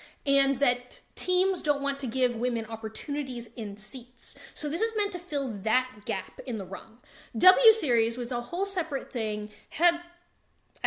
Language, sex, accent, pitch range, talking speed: English, female, American, 230-305 Hz, 170 wpm